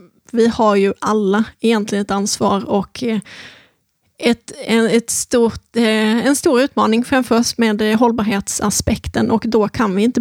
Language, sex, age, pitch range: Swedish, female, 30-49, 205-235 Hz